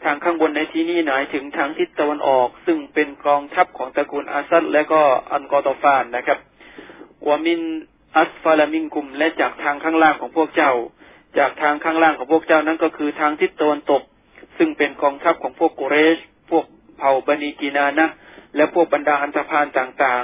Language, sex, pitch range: Thai, male, 140-160 Hz